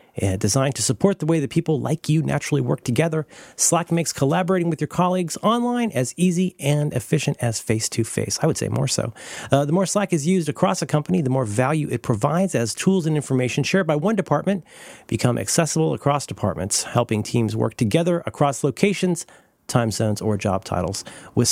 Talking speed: 190 wpm